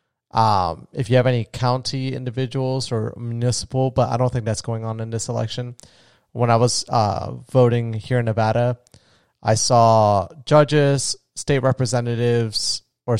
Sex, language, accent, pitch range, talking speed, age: male, English, American, 110-130 Hz, 150 wpm, 30-49